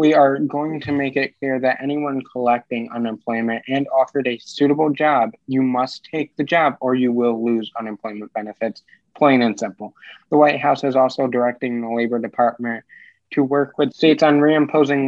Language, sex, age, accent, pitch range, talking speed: English, male, 20-39, American, 125-150 Hz, 180 wpm